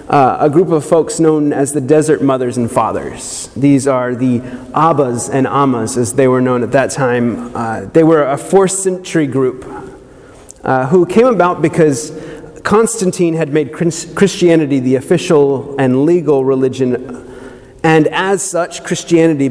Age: 30-49